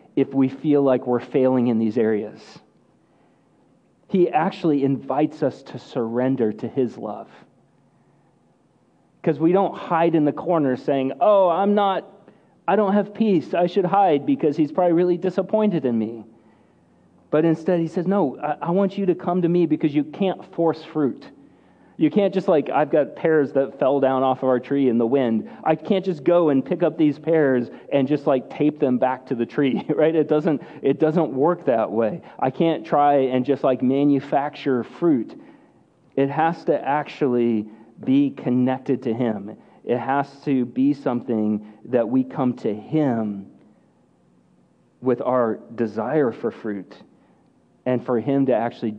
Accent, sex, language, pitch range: American, male, English, 125-165 Hz